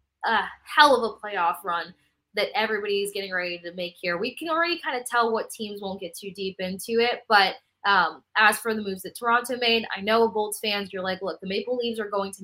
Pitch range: 185-225 Hz